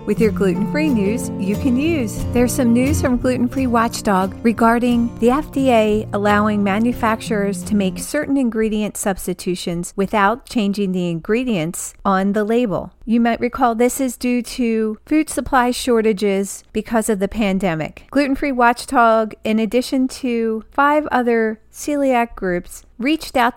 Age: 40-59